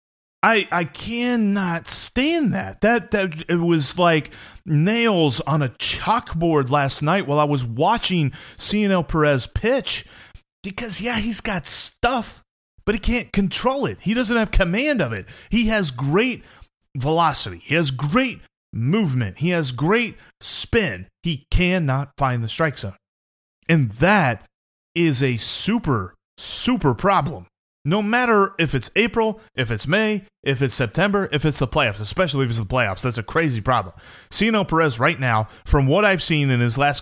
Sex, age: male, 30-49